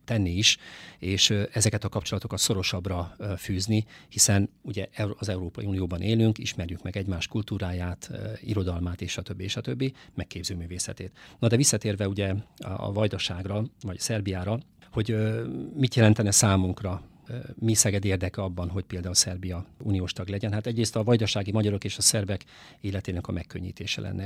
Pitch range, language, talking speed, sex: 95-110 Hz, Hungarian, 145 wpm, male